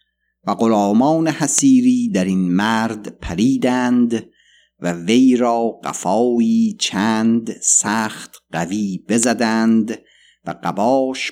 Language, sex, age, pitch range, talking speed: Persian, male, 50-69, 90-120 Hz, 90 wpm